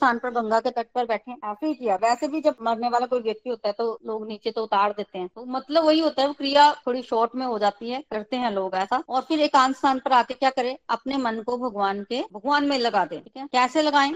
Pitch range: 230-285 Hz